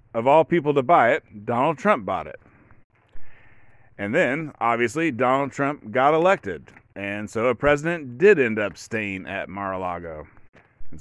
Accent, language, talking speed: American, English, 155 wpm